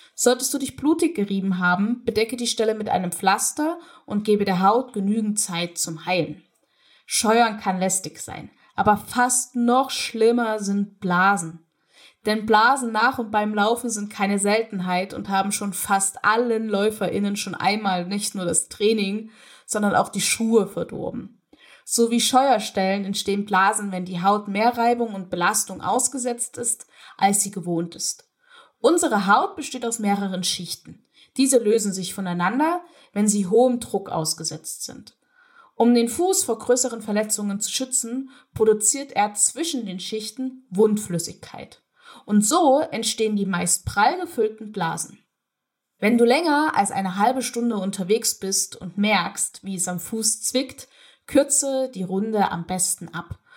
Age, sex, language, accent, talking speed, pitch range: 10-29, female, German, German, 150 wpm, 195-245 Hz